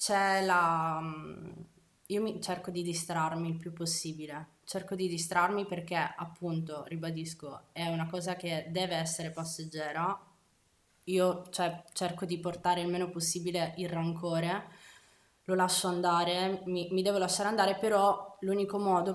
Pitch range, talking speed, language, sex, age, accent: 165-185 Hz, 140 wpm, Italian, female, 20-39, native